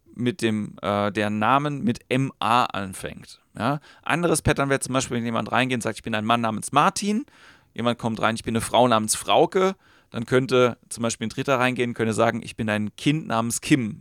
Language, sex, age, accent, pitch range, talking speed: German, male, 40-59, German, 115-150 Hz, 210 wpm